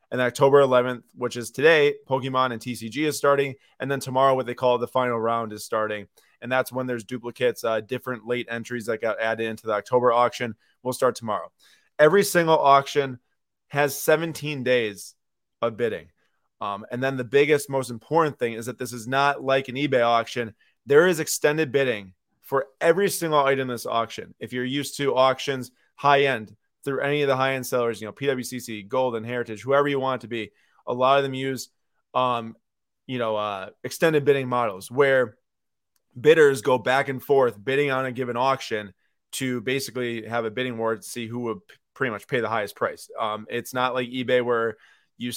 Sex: male